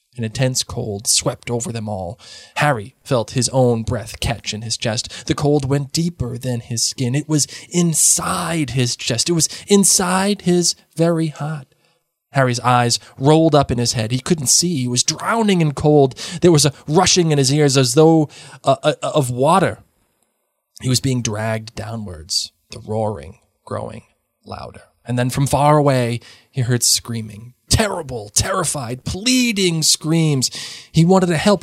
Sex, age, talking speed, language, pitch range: male, 20-39, 165 wpm, English, 115-160 Hz